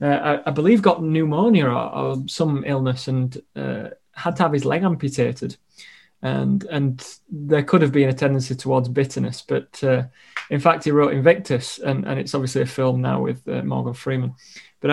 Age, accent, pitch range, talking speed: 20-39, British, 125-145 Hz, 190 wpm